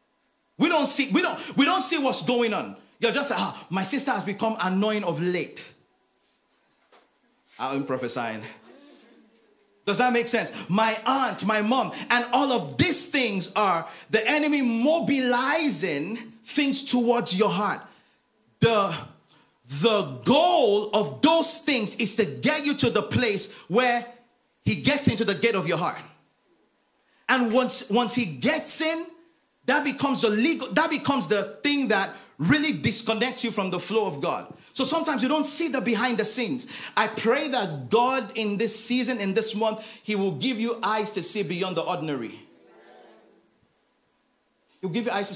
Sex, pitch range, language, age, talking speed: male, 205-275 Hz, English, 40-59, 165 wpm